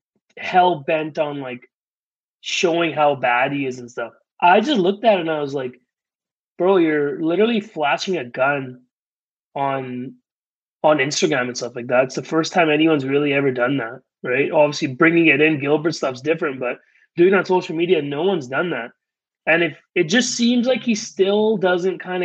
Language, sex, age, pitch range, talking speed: English, male, 20-39, 145-185 Hz, 185 wpm